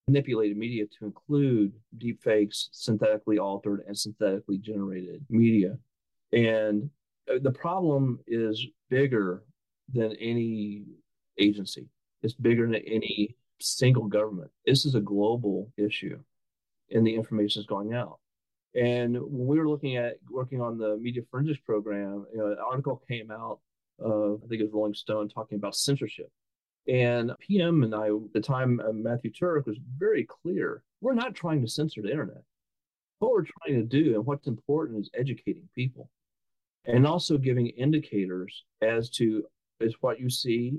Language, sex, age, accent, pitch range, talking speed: English, male, 40-59, American, 105-140 Hz, 155 wpm